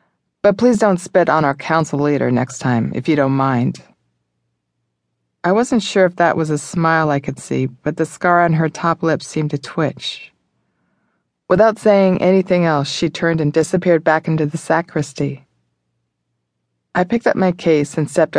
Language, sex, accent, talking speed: English, female, American, 175 wpm